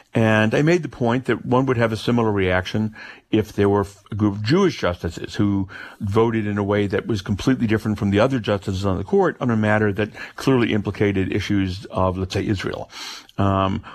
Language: English